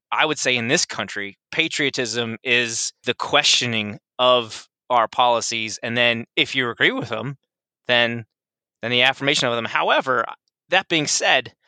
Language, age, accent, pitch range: English, 20-39, American, 120-155 Hz